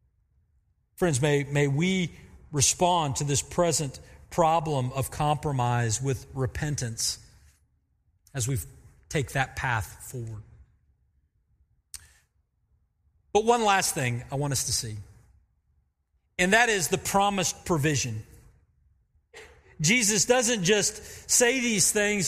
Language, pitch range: English, 140-215 Hz